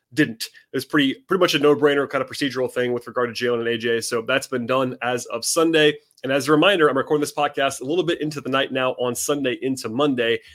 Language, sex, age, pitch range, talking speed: English, male, 30-49, 125-155 Hz, 250 wpm